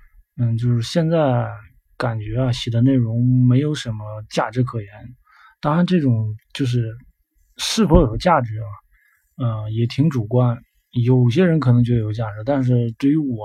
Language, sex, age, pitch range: Chinese, male, 20-39, 110-130 Hz